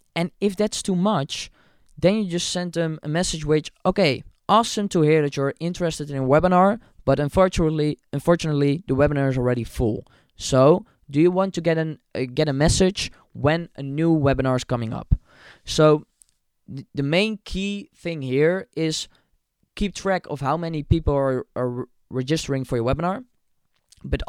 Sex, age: male, 20-39